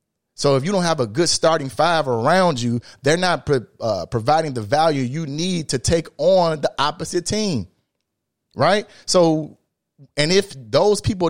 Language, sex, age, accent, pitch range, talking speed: English, male, 30-49, American, 130-170 Hz, 165 wpm